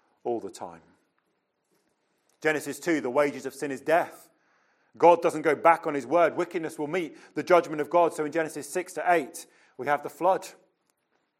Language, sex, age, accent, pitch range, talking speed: English, male, 40-59, British, 160-215 Hz, 185 wpm